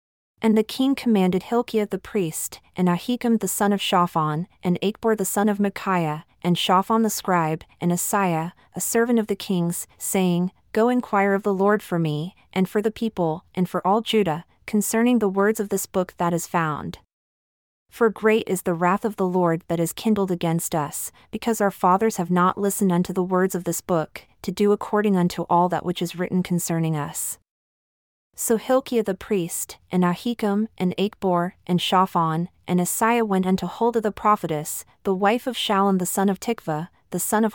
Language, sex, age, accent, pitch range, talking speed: English, female, 30-49, American, 175-210 Hz, 190 wpm